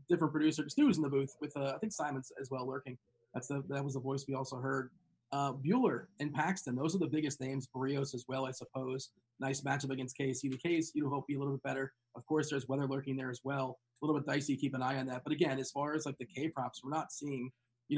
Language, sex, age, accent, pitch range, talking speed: English, male, 30-49, American, 130-150 Hz, 275 wpm